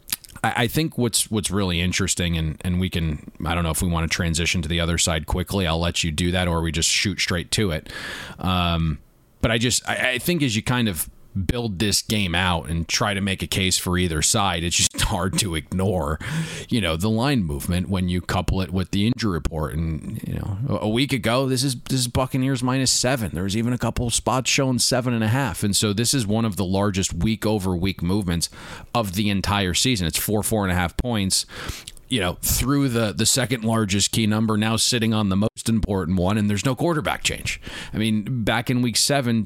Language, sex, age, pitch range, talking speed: English, male, 30-49, 90-115 Hz, 230 wpm